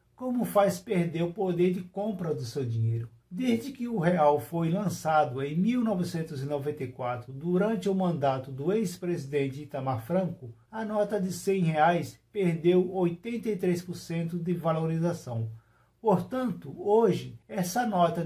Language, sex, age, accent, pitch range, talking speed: Portuguese, male, 50-69, Brazilian, 155-205 Hz, 125 wpm